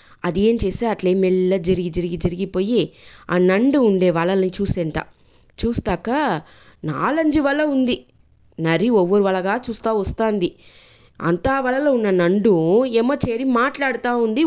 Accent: Indian